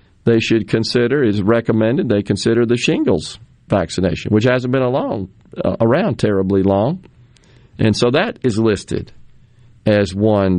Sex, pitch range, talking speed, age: male, 105-120 Hz, 140 wpm, 40-59